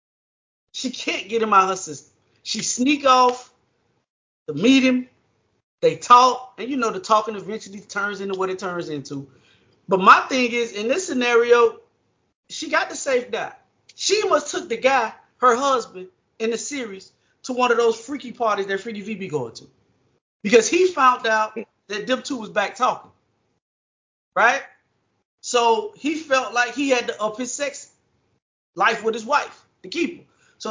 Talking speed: 175 wpm